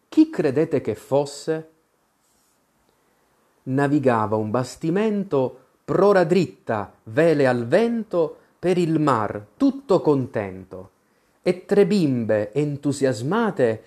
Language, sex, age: Italian, male, 30-49